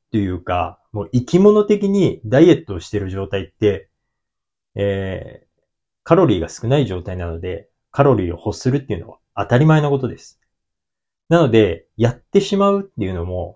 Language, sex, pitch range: Japanese, male, 95-145 Hz